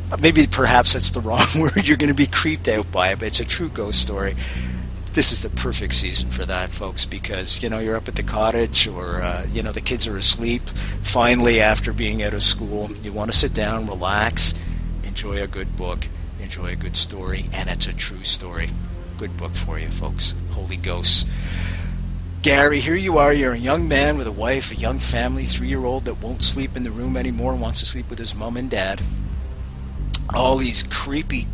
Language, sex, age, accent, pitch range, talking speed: English, male, 50-69, American, 80-115 Hz, 215 wpm